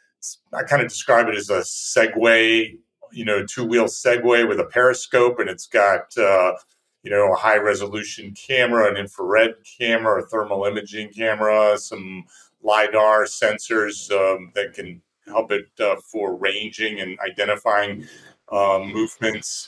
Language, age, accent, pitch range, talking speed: English, 40-59, American, 100-115 Hz, 140 wpm